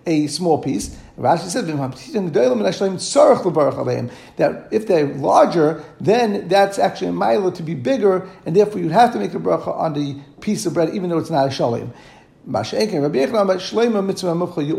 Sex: male